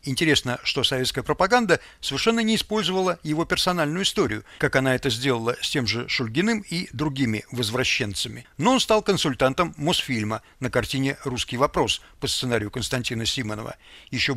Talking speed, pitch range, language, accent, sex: 145 wpm, 125-180 Hz, Russian, native, male